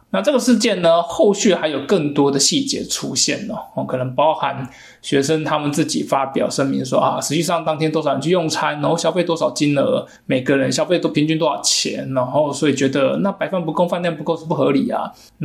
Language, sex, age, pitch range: Chinese, male, 20-39, 150-205 Hz